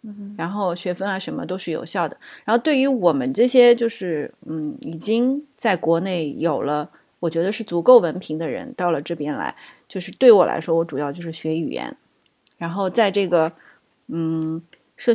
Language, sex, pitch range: Chinese, female, 165-210 Hz